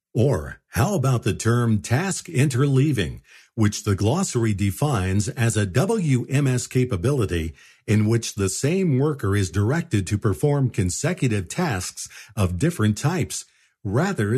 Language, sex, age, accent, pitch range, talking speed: English, male, 50-69, American, 100-145 Hz, 125 wpm